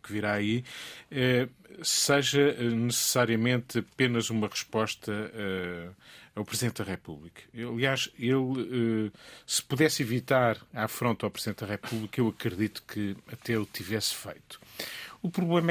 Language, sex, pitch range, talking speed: Portuguese, male, 105-130 Hz, 120 wpm